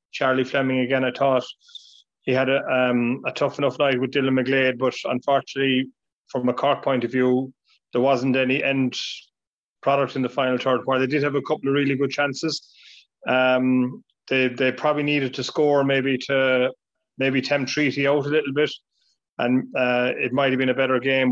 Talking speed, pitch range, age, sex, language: 190 wpm, 130-140 Hz, 30-49, male, English